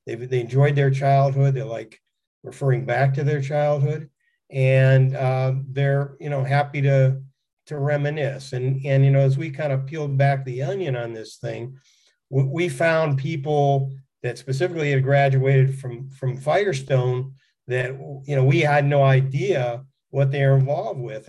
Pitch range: 130-140 Hz